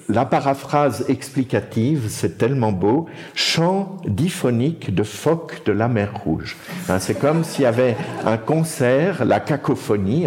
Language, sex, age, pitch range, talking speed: French, male, 50-69, 105-145 Hz, 145 wpm